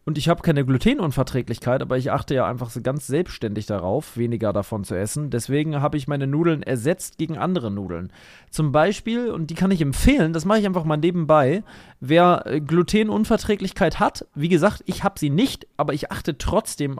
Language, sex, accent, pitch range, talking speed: German, male, German, 140-195 Hz, 185 wpm